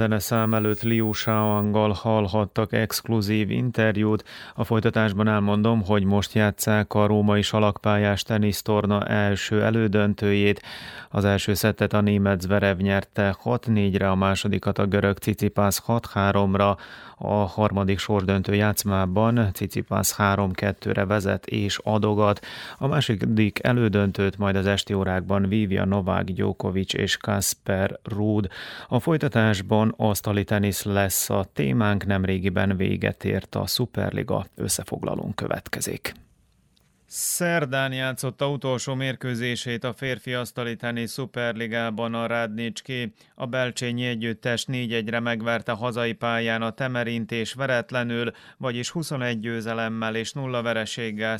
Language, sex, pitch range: Hungarian, male, 100-115 Hz